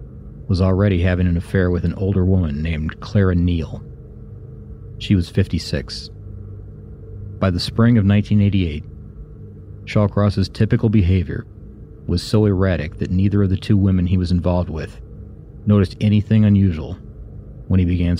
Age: 40-59